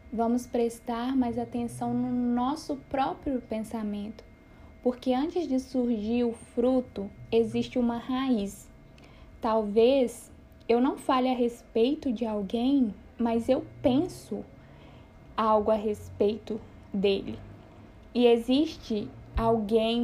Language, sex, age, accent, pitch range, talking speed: Portuguese, female, 10-29, Brazilian, 225-250 Hz, 105 wpm